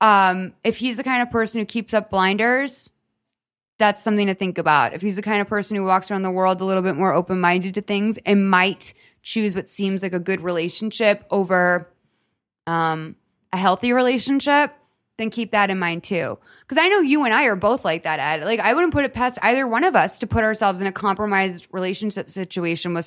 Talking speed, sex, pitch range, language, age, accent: 220 wpm, female, 185-225 Hz, English, 20-39, American